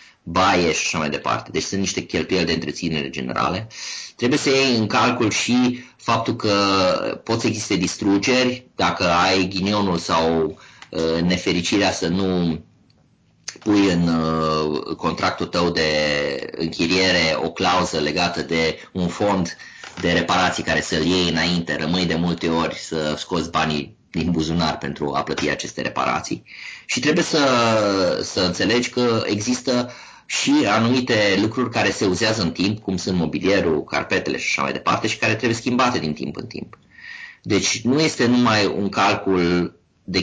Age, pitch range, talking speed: 30-49, 85-115 Hz, 150 wpm